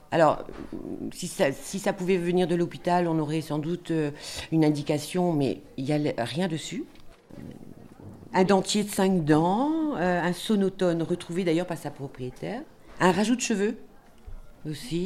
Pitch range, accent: 145-185 Hz, French